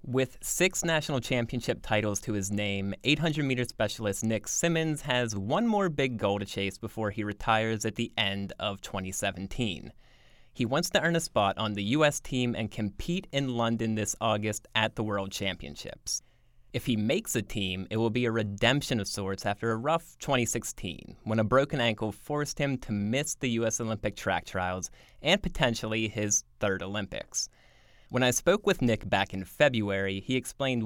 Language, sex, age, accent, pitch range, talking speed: English, male, 20-39, American, 105-135 Hz, 180 wpm